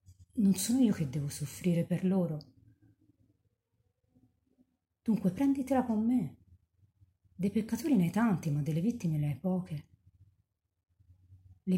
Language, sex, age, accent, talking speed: Italian, female, 40-59, native, 120 wpm